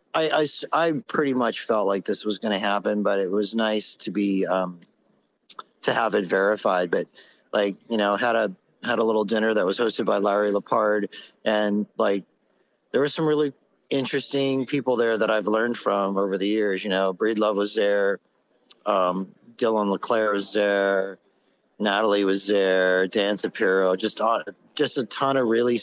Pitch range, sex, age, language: 100-120 Hz, male, 40-59, English